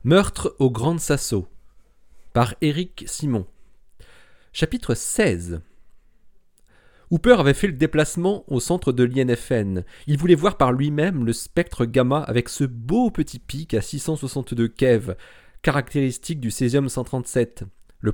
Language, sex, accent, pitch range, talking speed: French, male, French, 120-170 Hz, 130 wpm